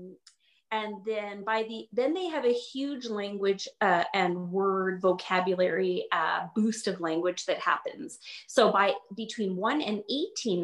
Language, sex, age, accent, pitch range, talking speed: English, female, 30-49, American, 190-275 Hz, 145 wpm